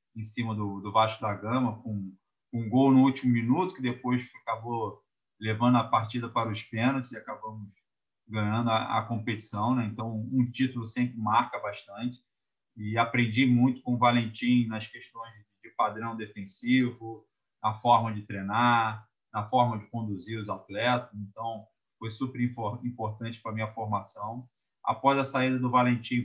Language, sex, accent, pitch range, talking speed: Portuguese, male, Brazilian, 110-125 Hz, 160 wpm